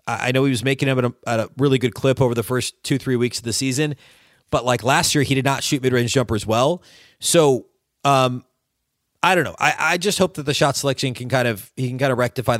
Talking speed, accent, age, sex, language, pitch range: 260 wpm, American, 30-49, male, English, 110-135 Hz